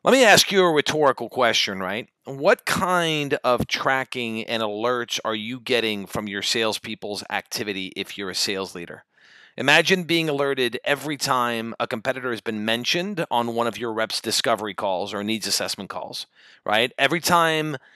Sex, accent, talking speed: male, American, 165 wpm